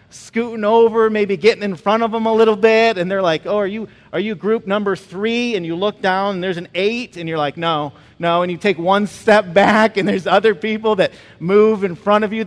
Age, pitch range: 40-59, 170-225 Hz